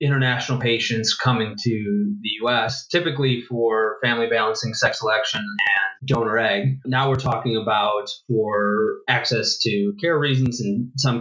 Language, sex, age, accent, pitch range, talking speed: English, male, 20-39, American, 110-135 Hz, 140 wpm